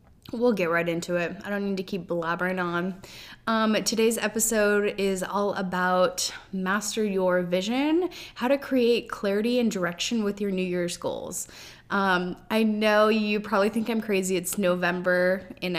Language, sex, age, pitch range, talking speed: English, female, 10-29, 185-220 Hz, 165 wpm